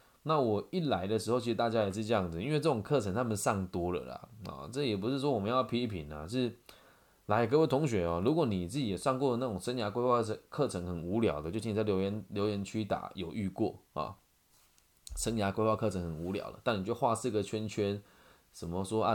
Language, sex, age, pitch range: Chinese, male, 20-39, 105-150 Hz